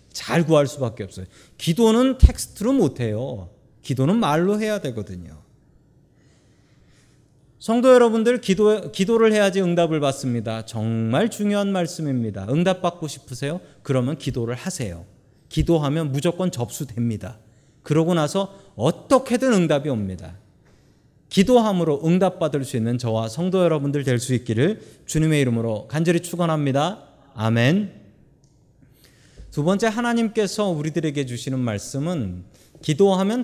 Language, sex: Korean, male